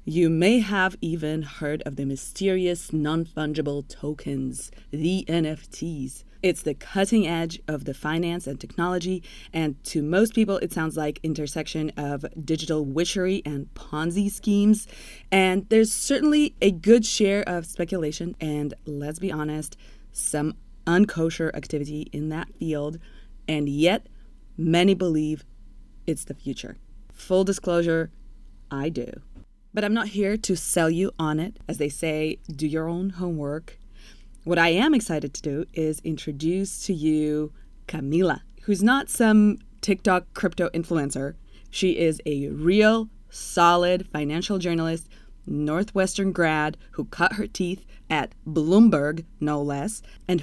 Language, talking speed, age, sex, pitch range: English, 135 wpm, 20-39, female, 150-190 Hz